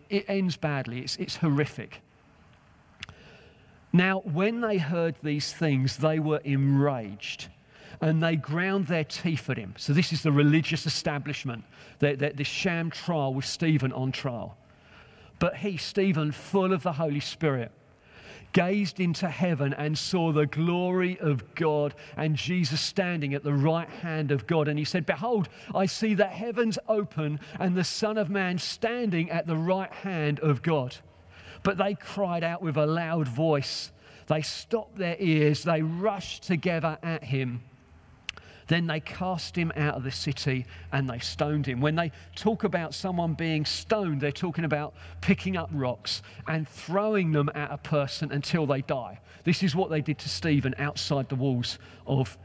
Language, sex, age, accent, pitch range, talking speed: English, male, 40-59, British, 135-175 Hz, 165 wpm